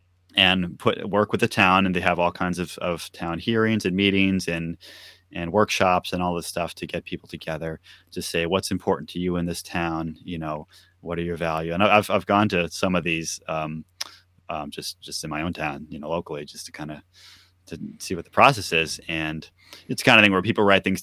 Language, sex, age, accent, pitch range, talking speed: English, male, 30-49, American, 80-95 Hz, 230 wpm